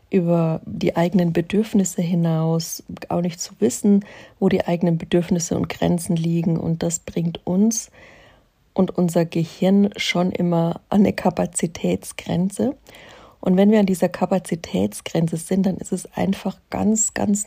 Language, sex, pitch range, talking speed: German, female, 170-200 Hz, 140 wpm